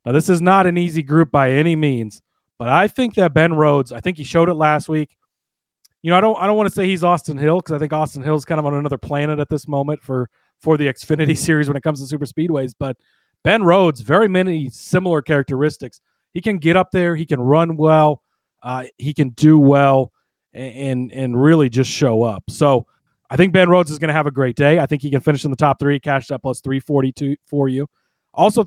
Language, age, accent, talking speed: English, 30-49, American, 245 wpm